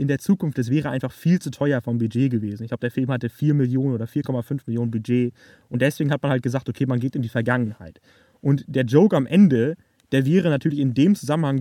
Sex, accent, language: male, German, German